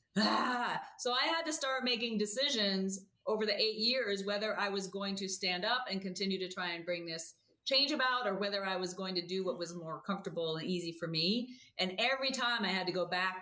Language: English